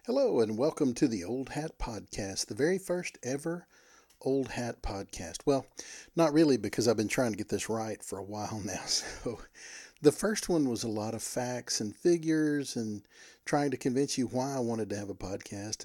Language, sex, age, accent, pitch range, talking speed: English, male, 50-69, American, 110-150 Hz, 200 wpm